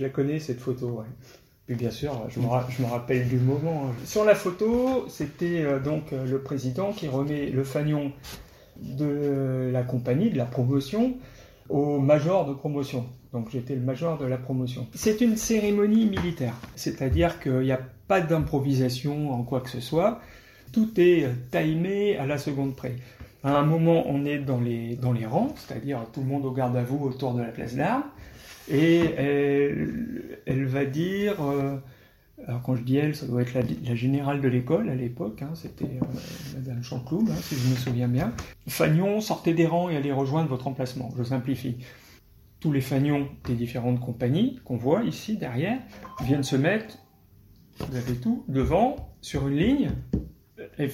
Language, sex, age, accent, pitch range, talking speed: French, male, 40-59, French, 125-160 Hz, 175 wpm